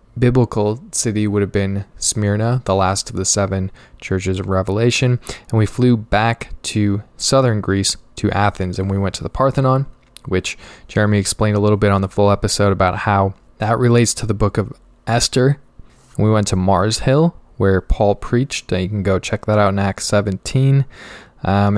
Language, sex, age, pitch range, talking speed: English, male, 10-29, 100-120 Hz, 180 wpm